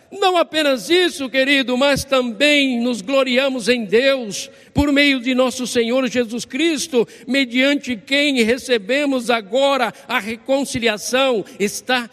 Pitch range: 245-305 Hz